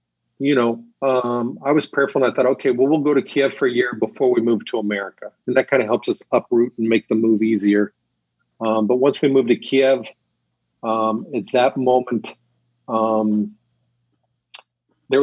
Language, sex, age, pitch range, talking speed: English, male, 40-59, 105-125 Hz, 190 wpm